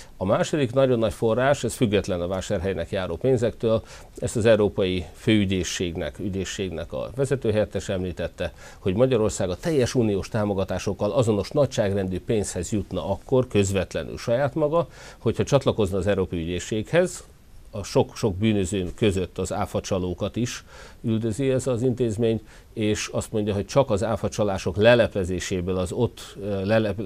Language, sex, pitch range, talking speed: Hungarian, male, 95-115 Hz, 135 wpm